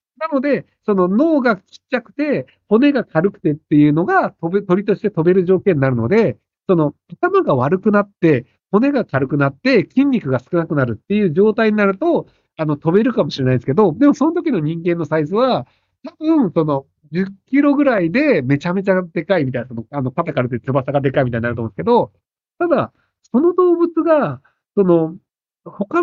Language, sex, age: Japanese, male, 50-69